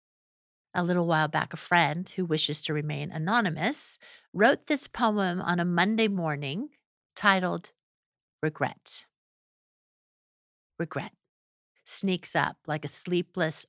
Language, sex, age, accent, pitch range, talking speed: English, female, 50-69, American, 165-225 Hz, 115 wpm